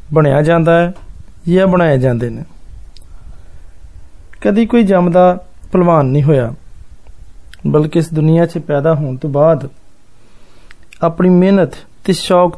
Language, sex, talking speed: Hindi, male, 95 wpm